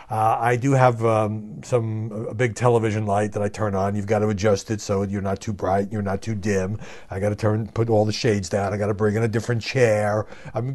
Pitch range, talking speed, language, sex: 105-135 Hz, 255 wpm, English, male